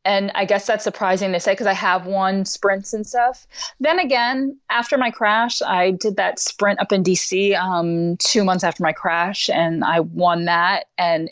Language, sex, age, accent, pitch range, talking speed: English, female, 20-39, American, 160-205 Hz, 195 wpm